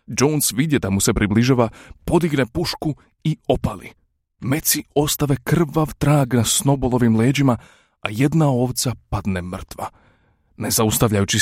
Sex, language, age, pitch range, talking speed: male, Croatian, 30-49, 110-140 Hz, 125 wpm